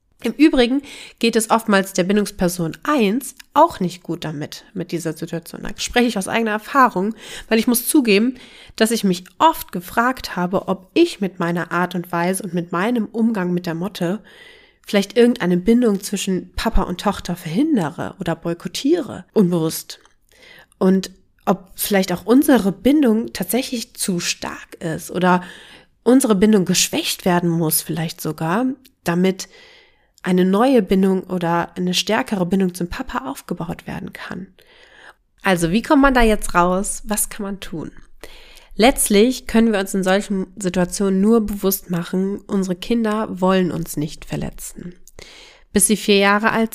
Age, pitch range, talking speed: 30-49, 180-235 Hz, 155 wpm